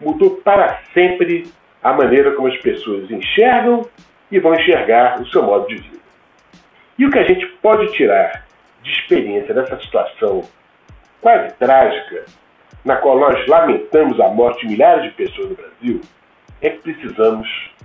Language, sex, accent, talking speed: English, male, Brazilian, 150 wpm